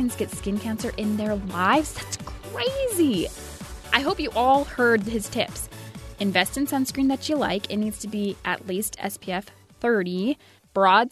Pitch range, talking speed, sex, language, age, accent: 190-240 Hz, 160 wpm, female, English, 20-39, American